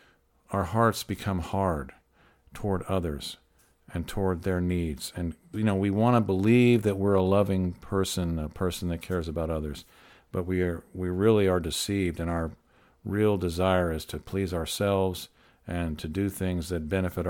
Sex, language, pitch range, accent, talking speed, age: male, English, 85-105 Hz, American, 165 wpm, 50-69